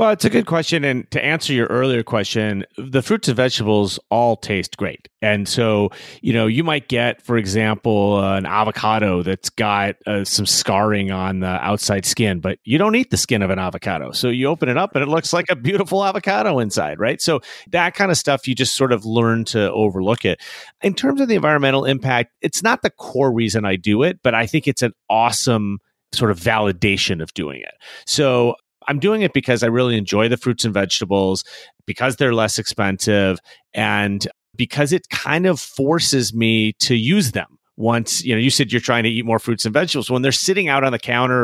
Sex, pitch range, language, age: male, 105-135 Hz, English, 30-49